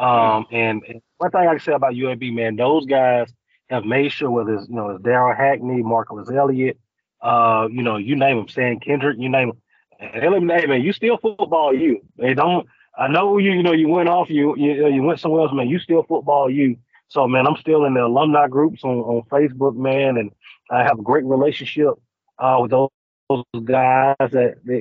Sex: male